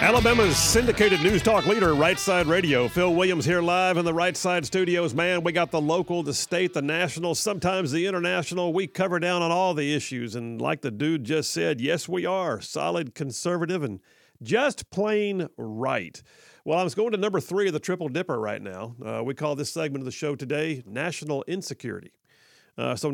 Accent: American